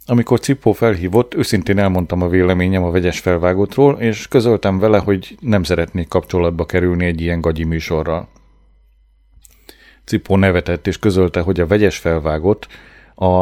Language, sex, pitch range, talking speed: Hungarian, male, 85-115 Hz, 140 wpm